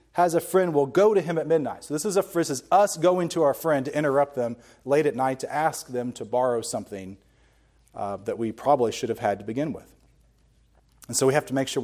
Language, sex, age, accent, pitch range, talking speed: English, male, 40-59, American, 130-185 Hz, 250 wpm